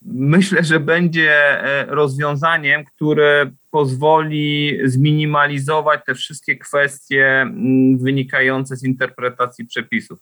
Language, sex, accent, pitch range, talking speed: Polish, male, native, 130-155 Hz, 80 wpm